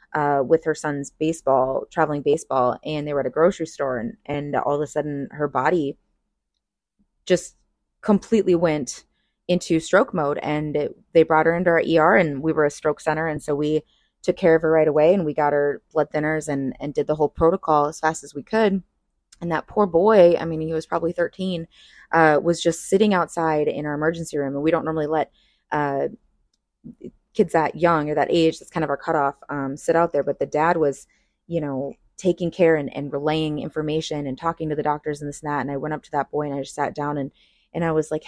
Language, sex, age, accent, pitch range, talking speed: English, female, 20-39, American, 145-165 Hz, 225 wpm